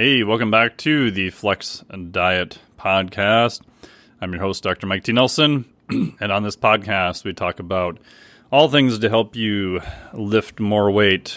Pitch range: 95-115 Hz